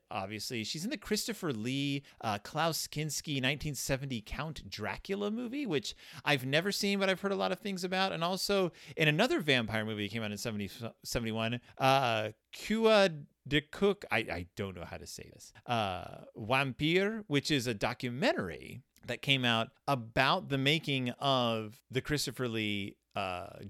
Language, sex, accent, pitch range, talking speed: English, male, American, 110-155 Hz, 165 wpm